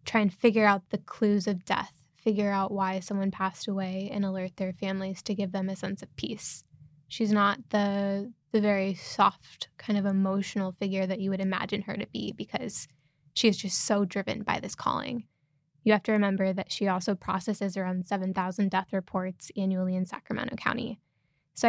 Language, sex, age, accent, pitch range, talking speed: English, female, 10-29, American, 185-215 Hz, 190 wpm